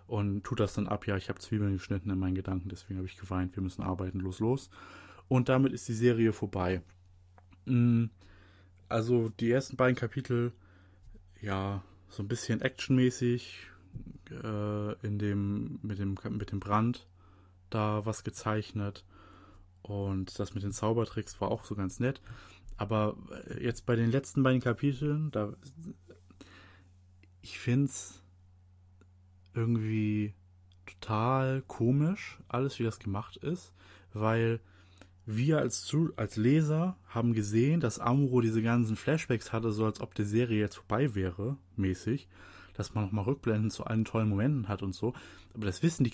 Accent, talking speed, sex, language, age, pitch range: German, 150 wpm, male, German, 20-39, 95-120 Hz